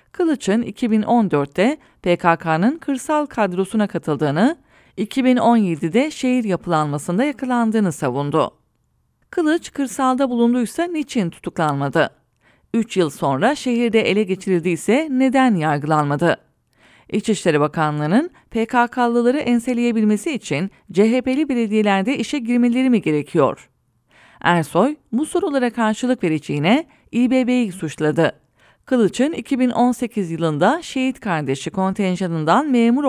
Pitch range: 165-250 Hz